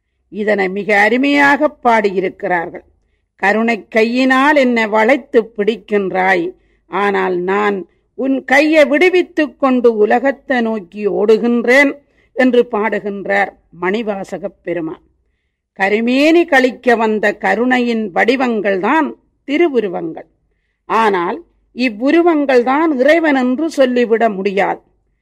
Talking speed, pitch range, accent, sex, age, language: 80 wpm, 205-285 Hz, native, female, 40-59, Tamil